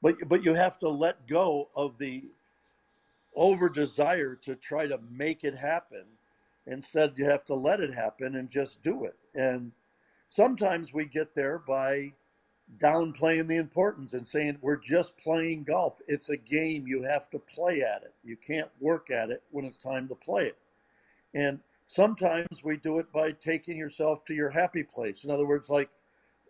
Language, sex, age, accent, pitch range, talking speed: English, male, 50-69, American, 140-175 Hz, 175 wpm